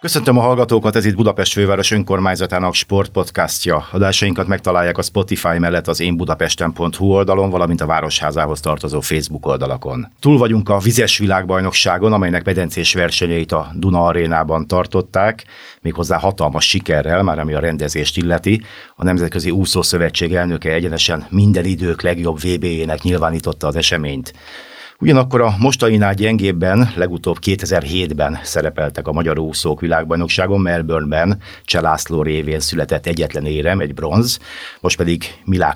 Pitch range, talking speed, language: 80-100 Hz, 130 wpm, Hungarian